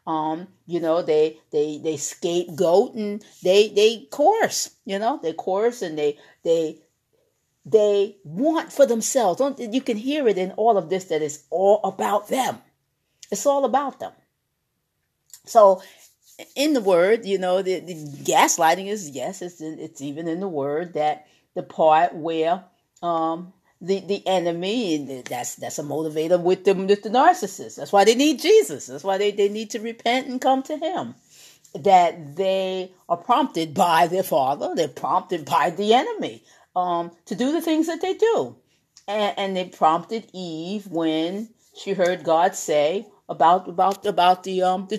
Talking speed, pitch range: 170 wpm, 165-225 Hz